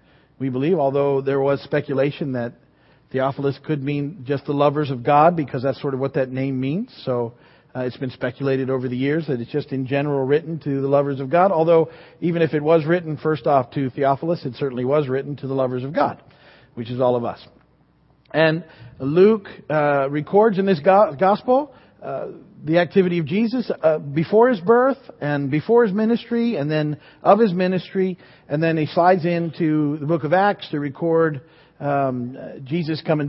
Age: 40-59